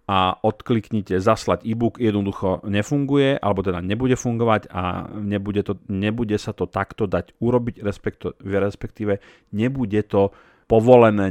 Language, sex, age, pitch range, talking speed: Slovak, male, 40-59, 90-110 Hz, 125 wpm